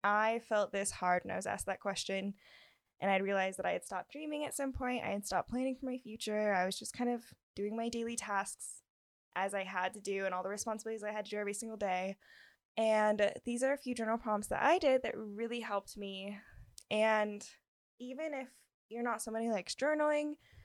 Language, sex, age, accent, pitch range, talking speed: English, female, 10-29, American, 200-235 Hz, 220 wpm